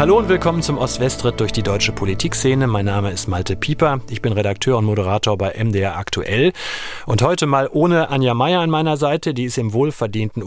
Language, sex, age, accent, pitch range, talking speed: German, male, 40-59, German, 110-150 Hz, 200 wpm